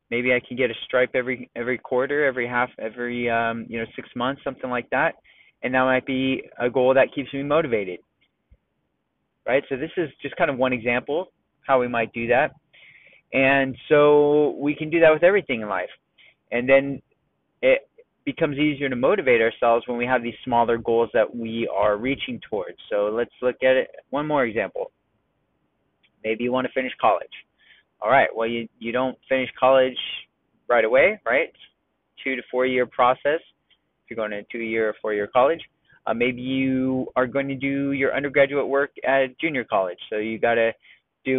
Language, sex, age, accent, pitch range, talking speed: English, male, 20-39, American, 115-140 Hz, 185 wpm